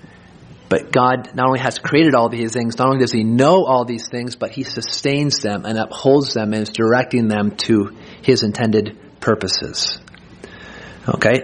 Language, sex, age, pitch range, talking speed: English, male, 30-49, 120-155 Hz, 175 wpm